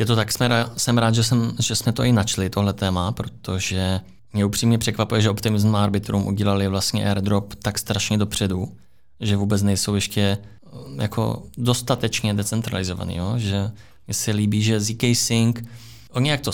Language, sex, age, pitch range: Czech, male, 20-39, 95-110 Hz